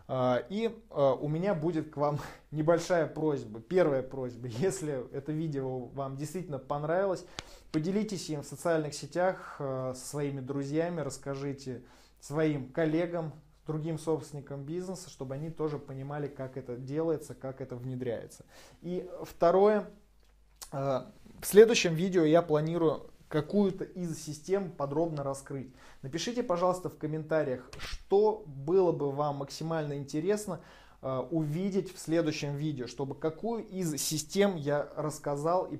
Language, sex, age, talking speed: Russian, male, 20-39, 120 wpm